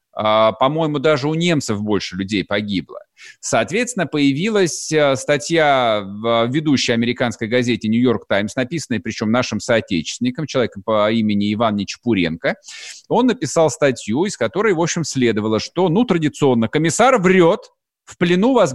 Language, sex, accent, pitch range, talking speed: Russian, male, native, 125-160 Hz, 130 wpm